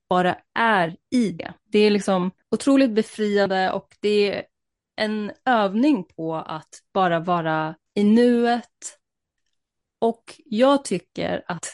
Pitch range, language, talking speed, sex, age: 175-210 Hz, Swedish, 125 wpm, female, 30-49